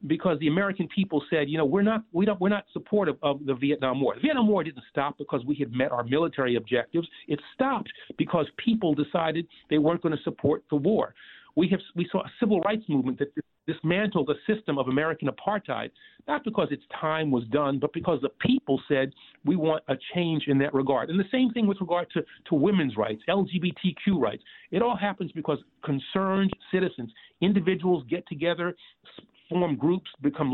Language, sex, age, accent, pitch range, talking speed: English, male, 50-69, American, 140-185 Hz, 195 wpm